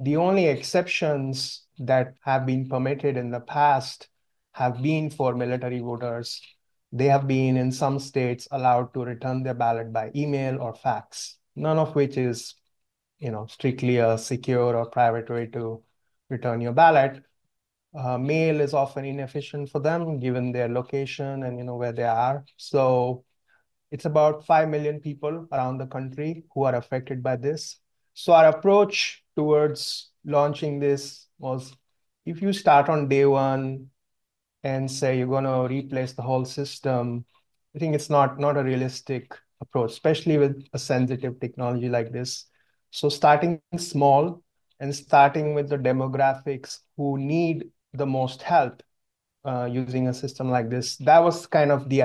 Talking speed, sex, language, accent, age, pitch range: 155 wpm, male, English, Indian, 30-49, 125-145 Hz